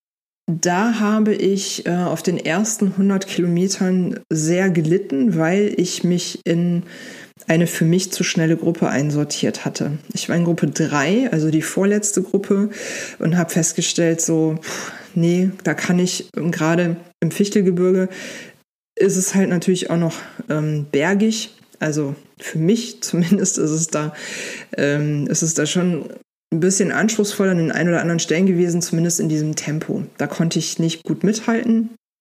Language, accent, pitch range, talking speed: German, German, 165-195 Hz, 155 wpm